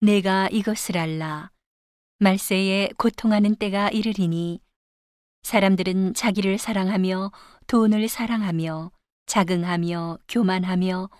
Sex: female